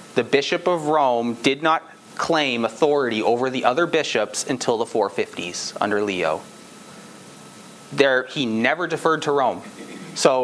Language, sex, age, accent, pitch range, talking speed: English, male, 30-49, American, 130-215 Hz, 140 wpm